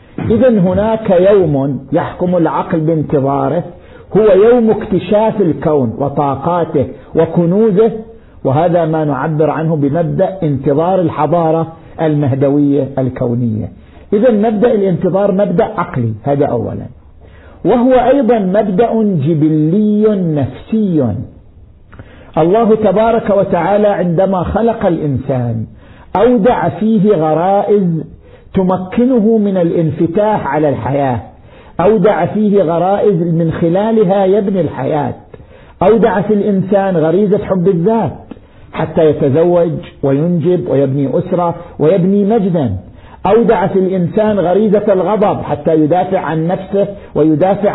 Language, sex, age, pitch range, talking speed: Arabic, male, 50-69, 150-205 Hz, 95 wpm